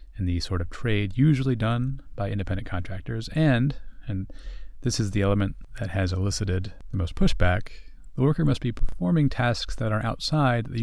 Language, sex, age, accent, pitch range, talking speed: English, male, 30-49, American, 95-130 Hz, 175 wpm